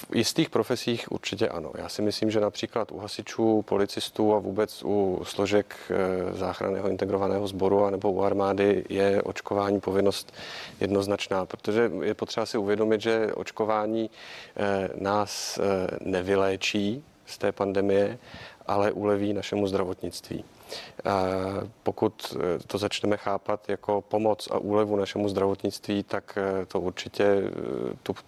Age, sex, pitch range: 40-59, male, 100-105 Hz